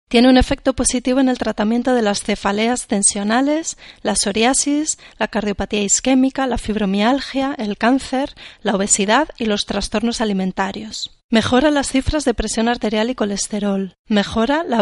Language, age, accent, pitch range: Spanish, 30-49, Spanish, 205-245 Hz